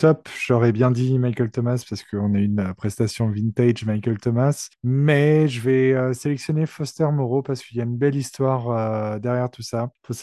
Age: 20-39